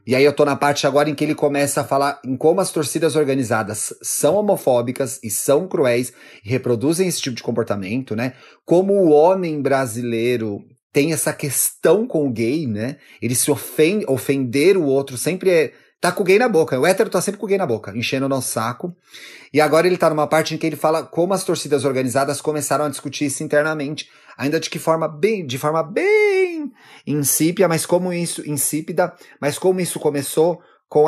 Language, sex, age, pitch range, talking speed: Portuguese, male, 30-49, 130-160 Hz, 205 wpm